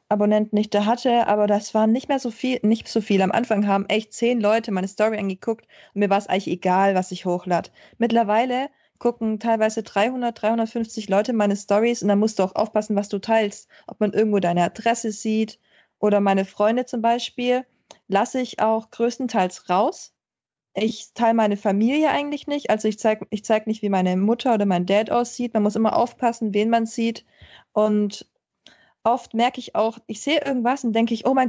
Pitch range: 210-245 Hz